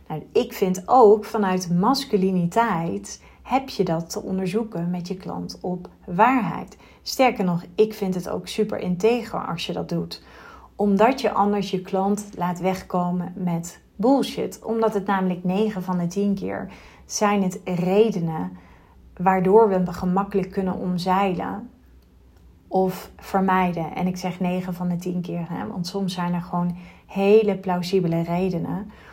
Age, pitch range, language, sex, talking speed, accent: 30-49, 175-205 Hz, Dutch, female, 145 wpm, Dutch